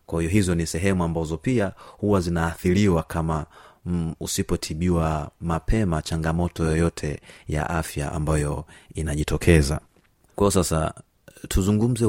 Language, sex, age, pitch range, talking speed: Swahili, male, 30-49, 80-100 Hz, 110 wpm